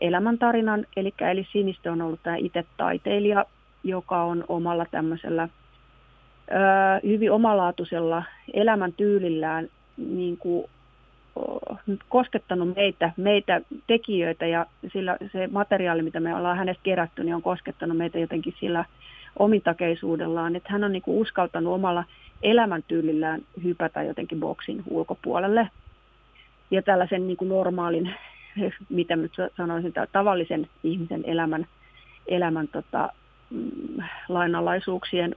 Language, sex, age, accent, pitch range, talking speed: Finnish, female, 30-49, native, 170-200 Hz, 115 wpm